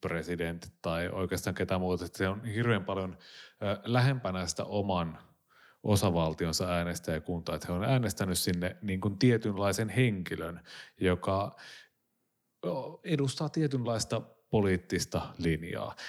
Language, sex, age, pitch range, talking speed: Finnish, male, 30-49, 90-115 Hz, 110 wpm